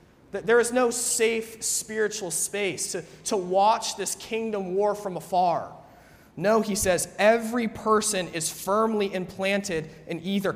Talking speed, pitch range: 135 wpm, 175-210 Hz